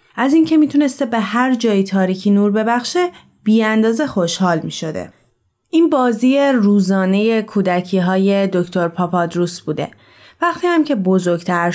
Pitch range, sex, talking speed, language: 190-240 Hz, female, 130 wpm, Persian